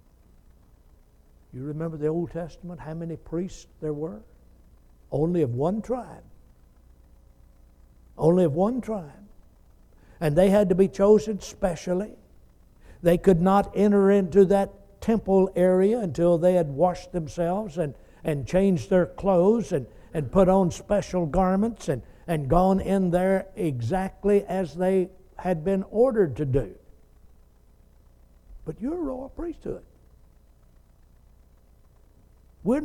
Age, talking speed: 60-79, 125 wpm